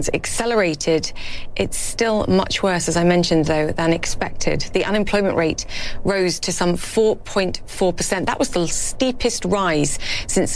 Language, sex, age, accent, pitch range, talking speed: English, female, 30-49, British, 160-195 Hz, 135 wpm